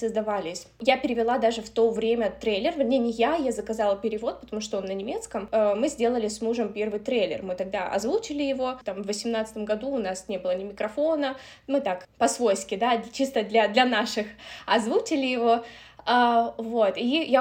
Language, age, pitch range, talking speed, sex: Russian, 20-39, 215-265 Hz, 180 wpm, female